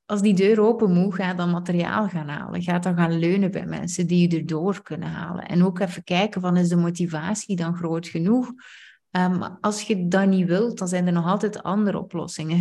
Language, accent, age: Dutch, Dutch, 30-49